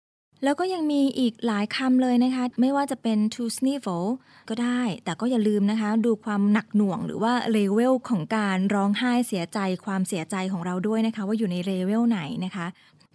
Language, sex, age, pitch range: Thai, female, 20-39, 195-245 Hz